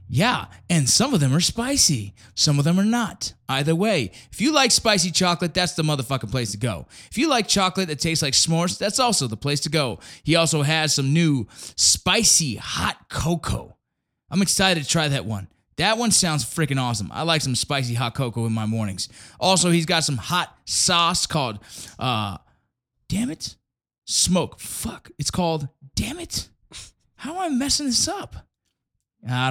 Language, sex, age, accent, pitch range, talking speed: English, male, 20-39, American, 125-175 Hz, 185 wpm